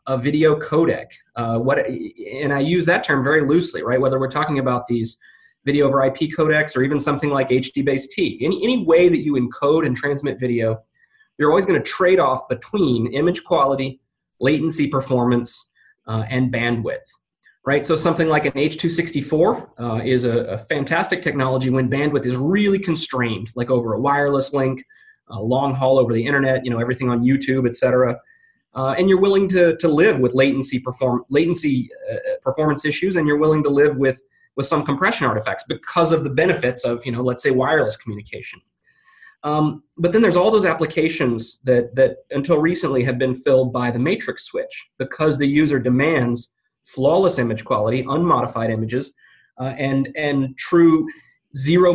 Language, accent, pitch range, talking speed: English, American, 125-160 Hz, 175 wpm